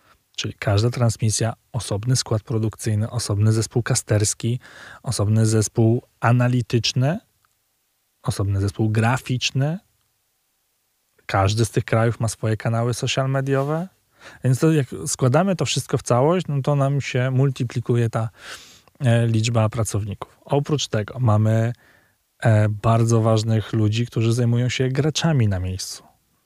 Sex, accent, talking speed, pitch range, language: male, native, 120 wpm, 110-130 Hz, Polish